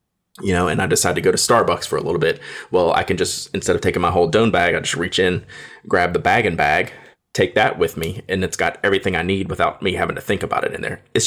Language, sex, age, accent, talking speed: English, male, 30-49, American, 280 wpm